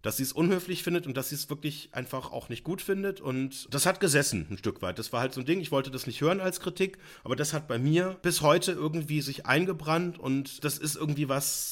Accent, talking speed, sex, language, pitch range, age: German, 255 wpm, male, German, 120-155 Hz, 30-49